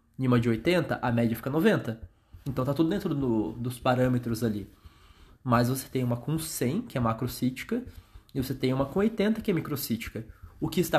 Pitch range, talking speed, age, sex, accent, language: 110-165 Hz, 200 wpm, 20-39, male, Brazilian, Portuguese